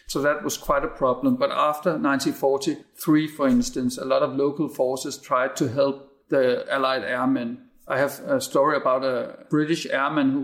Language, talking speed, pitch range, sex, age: English, 180 wpm, 135-160 Hz, male, 50-69